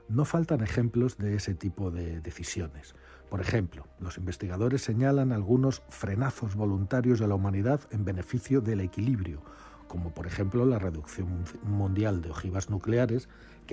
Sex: male